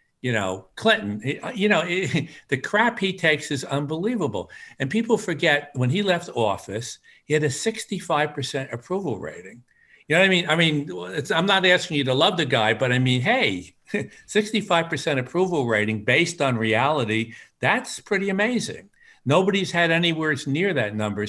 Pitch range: 125-195 Hz